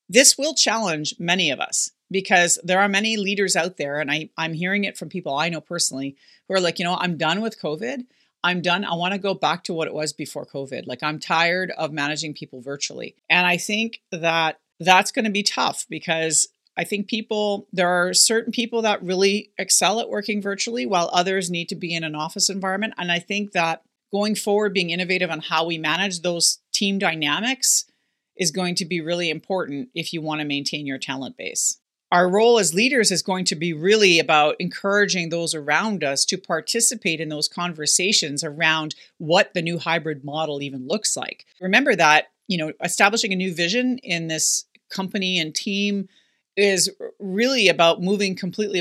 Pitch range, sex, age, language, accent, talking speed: 160-200 Hz, female, 40-59, English, American, 195 wpm